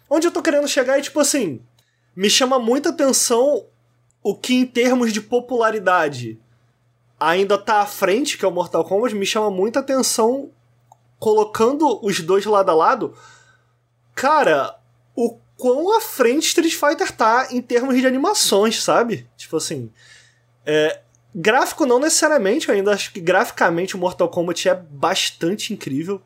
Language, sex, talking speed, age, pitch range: Portuguese, male, 155 wpm, 20-39, 160-235 Hz